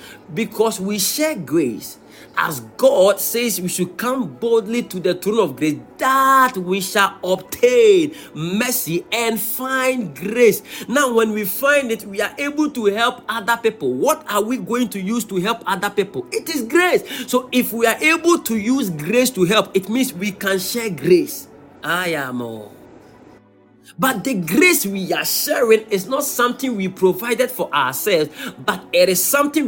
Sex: male